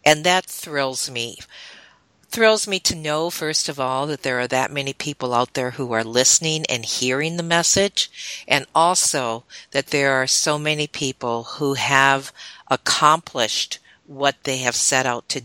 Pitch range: 125-160 Hz